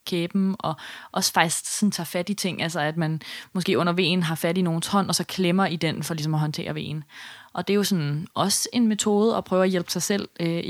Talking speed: 250 wpm